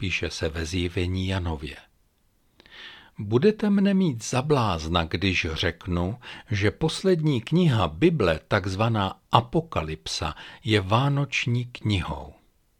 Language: Czech